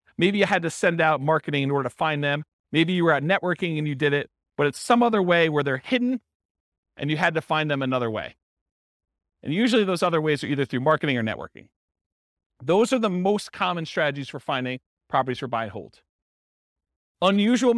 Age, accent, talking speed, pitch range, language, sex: 40-59, American, 210 wpm, 135-200 Hz, English, male